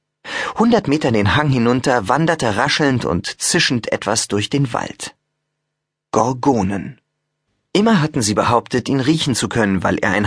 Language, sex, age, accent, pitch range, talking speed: German, male, 30-49, German, 110-155 Hz, 145 wpm